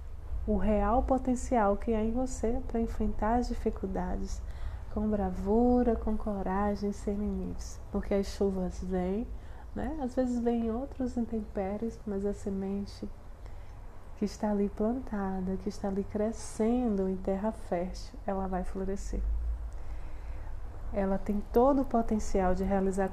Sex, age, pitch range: female, 20-39, 185-230 Hz